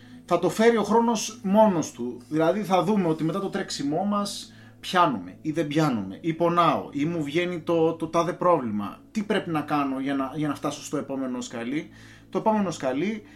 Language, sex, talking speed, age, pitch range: Greek, male, 190 wpm, 30-49, 160-210 Hz